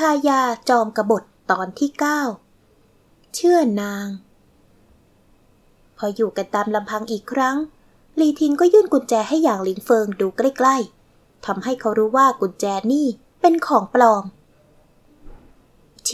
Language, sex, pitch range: Thai, female, 220-290 Hz